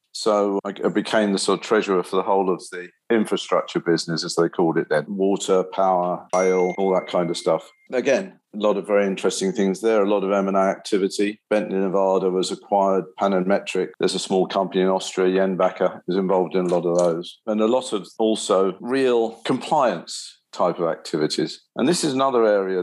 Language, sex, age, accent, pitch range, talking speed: English, male, 50-69, British, 90-105 Hz, 200 wpm